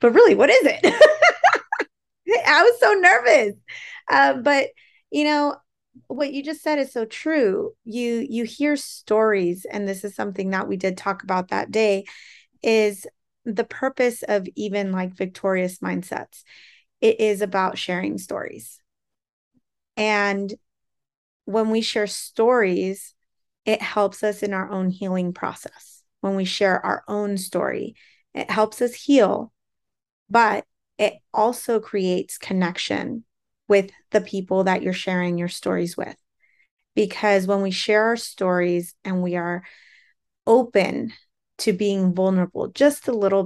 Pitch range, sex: 190-235 Hz, female